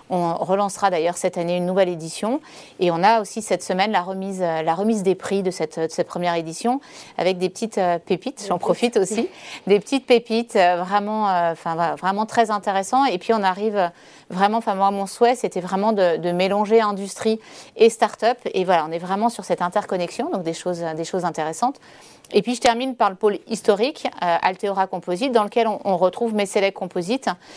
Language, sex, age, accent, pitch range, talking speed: French, female, 30-49, French, 180-225 Hz, 195 wpm